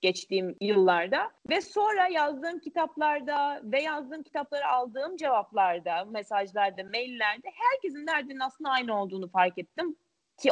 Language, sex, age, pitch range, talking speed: Turkish, female, 30-49, 205-320 Hz, 120 wpm